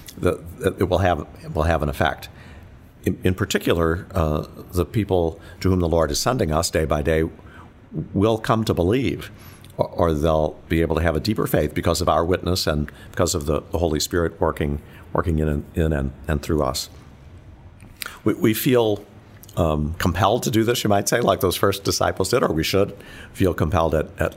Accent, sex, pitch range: American, male, 80-95 Hz